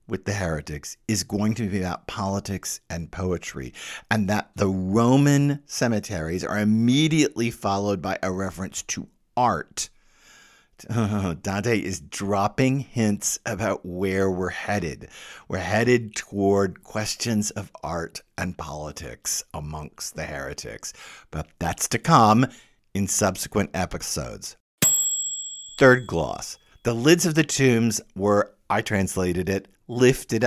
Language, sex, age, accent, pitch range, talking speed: English, male, 50-69, American, 100-135 Hz, 120 wpm